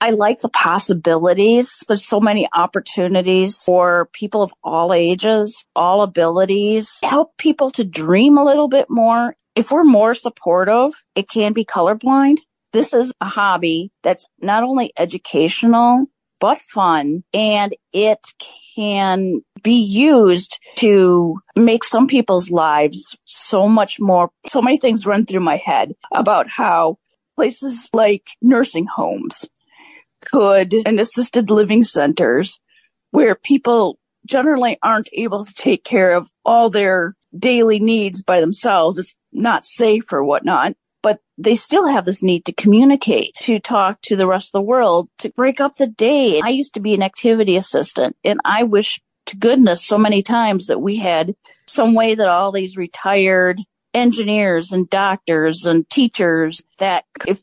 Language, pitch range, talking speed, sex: English, 185-235 Hz, 150 wpm, female